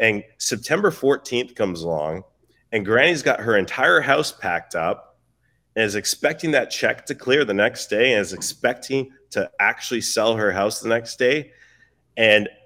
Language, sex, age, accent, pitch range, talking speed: English, male, 30-49, American, 95-130 Hz, 165 wpm